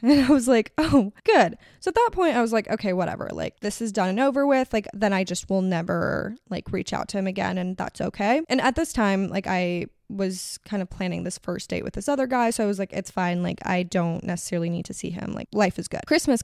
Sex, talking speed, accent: female, 265 wpm, American